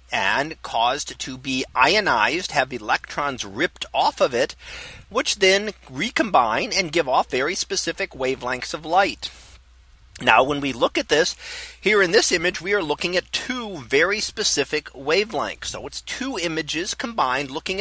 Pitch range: 135-195 Hz